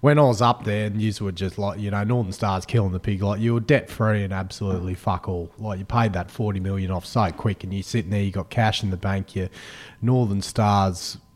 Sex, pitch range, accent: male, 100-115 Hz, Australian